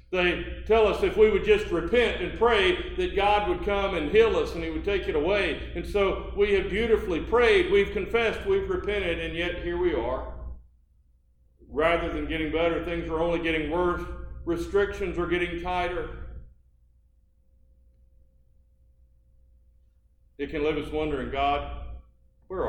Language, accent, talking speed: English, American, 155 wpm